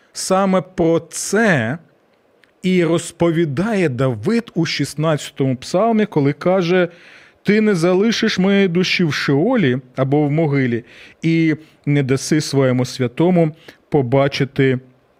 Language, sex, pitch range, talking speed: Ukrainian, male, 135-180 Hz, 105 wpm